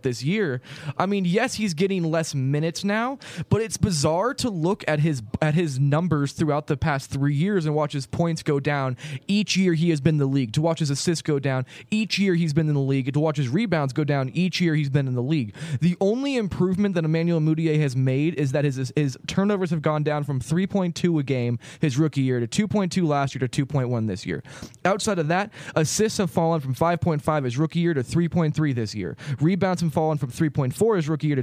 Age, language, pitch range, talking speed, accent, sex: 20-39, English, 140-180 Hz, 230 wpm, American, male